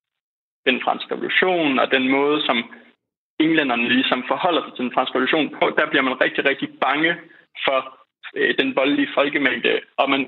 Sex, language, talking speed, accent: male, Danish, 165 wpm, native